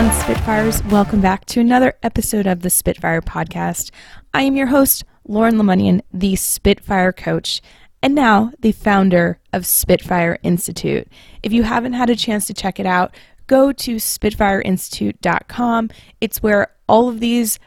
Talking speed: 150 wpm